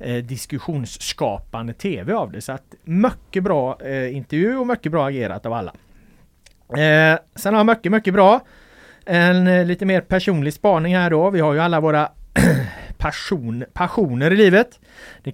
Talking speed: 165 wpm